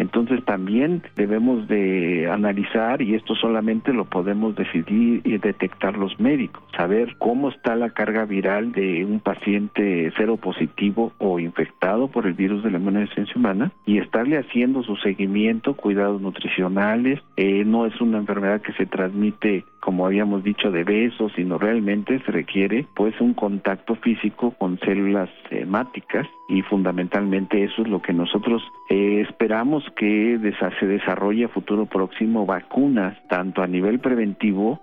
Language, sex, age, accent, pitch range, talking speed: Spanish, male, 50-69, Mexican, 100-110 Hz, 150 wpm